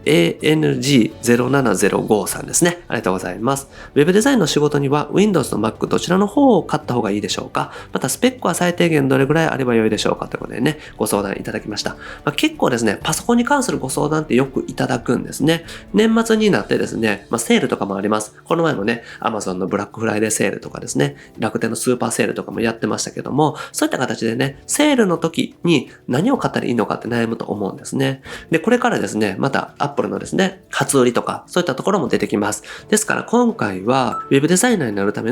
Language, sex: Japanese, male